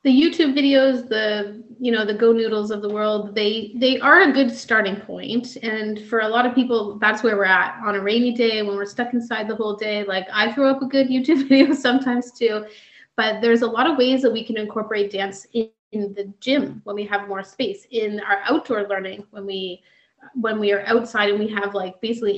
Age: 30-49